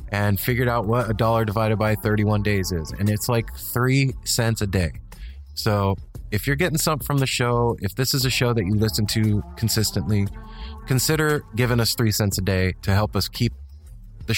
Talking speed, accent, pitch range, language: 200 wpm, American, 100-115 Hz, English